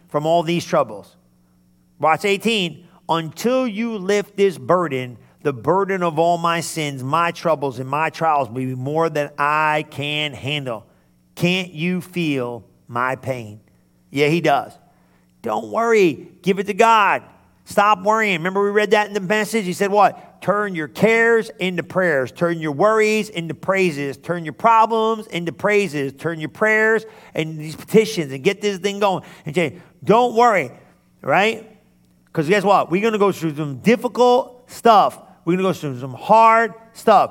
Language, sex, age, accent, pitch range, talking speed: English, male, 50-69, American, 150-210 Hz, 170 wpm